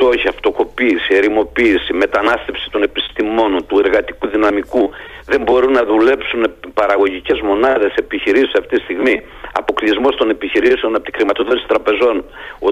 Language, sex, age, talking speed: Greek, male, 50-69, 125 wpm